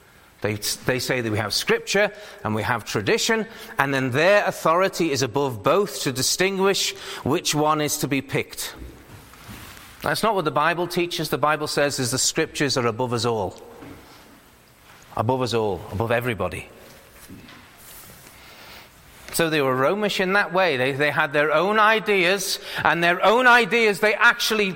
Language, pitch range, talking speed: English, 110-175 Hz, 160 wpm